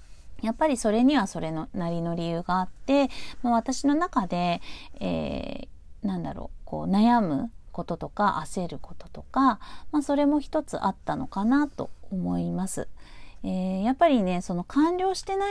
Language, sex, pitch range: Japanese, female, 170-255 Hz